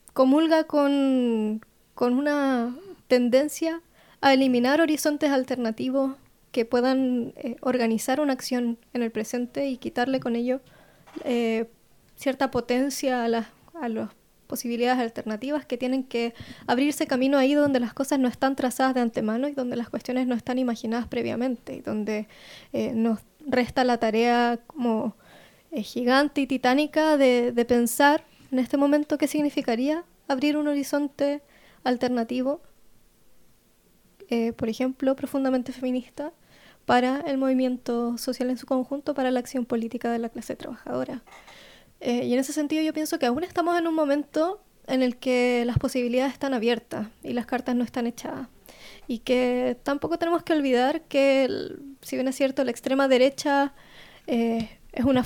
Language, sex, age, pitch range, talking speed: Spanish, female, 20-39, 240-280 Hz, 155 wpm